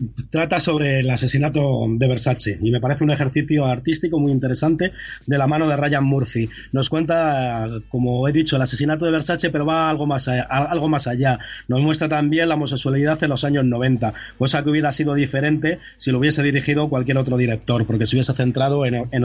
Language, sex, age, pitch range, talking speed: Spanish, male, 30-49, 130-160 Hz, 185 wpm